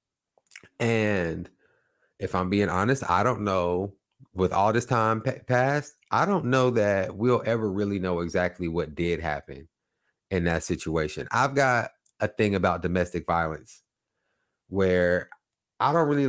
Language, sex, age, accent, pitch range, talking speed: English, male, 30-49, American, 95-120 Hz, 145 wpm